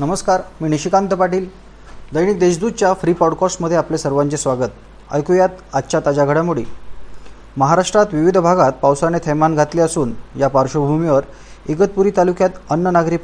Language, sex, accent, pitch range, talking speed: Marathi, male, native, 135-160 Hz, 125 wpm